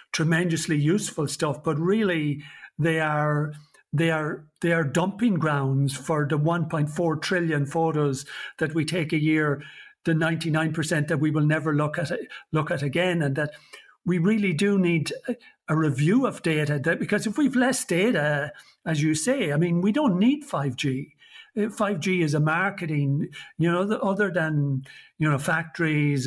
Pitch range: 150-180 Hz